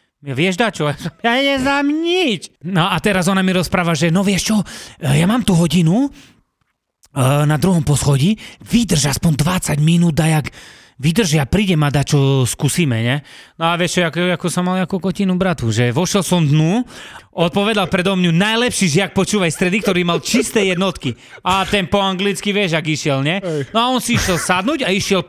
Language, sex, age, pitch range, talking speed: Slovak, male, 30-49, 160-210 Hz, 185 wpm